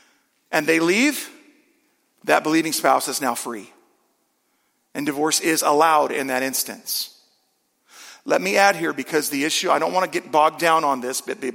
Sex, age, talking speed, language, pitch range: male, 40-59, 170 wpm, English, 135-175 Hz